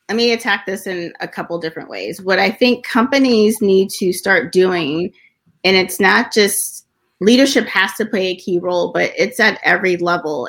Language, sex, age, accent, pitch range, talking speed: English, female, 30-49, American, 175-205 Hz, 190 wpm